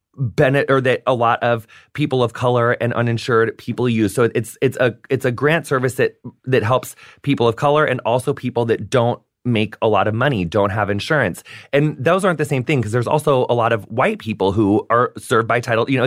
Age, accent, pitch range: 30-49, American, 125-195 Hz